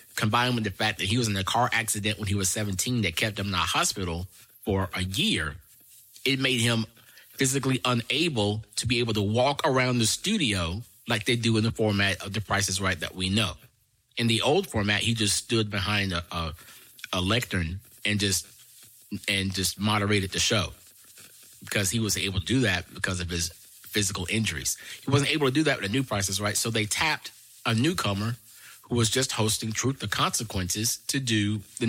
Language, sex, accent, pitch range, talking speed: English, male, American, 100-120 Hz, 205 wpm